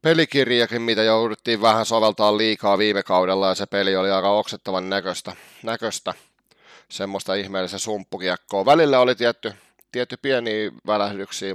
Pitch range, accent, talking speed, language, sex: 100-120 Hz, native, 130 wpm, Finnish, male